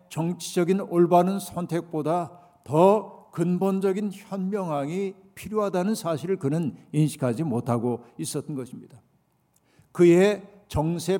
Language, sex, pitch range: Korean, male, 145-185 Hz